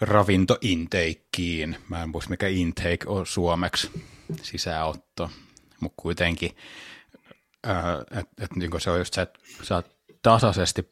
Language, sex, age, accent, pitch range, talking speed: Finnish, male, 30-49, native, 80-95 Hz, 130 wpm